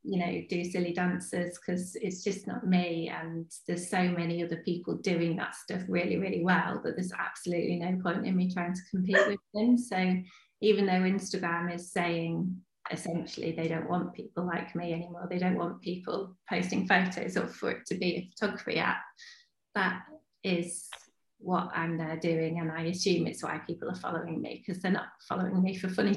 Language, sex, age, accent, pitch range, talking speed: English, female, 30-49, British, 175-200 Hz, 195 wpm